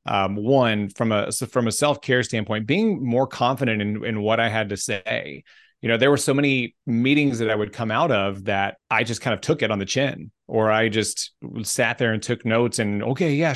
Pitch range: 110-135 Hz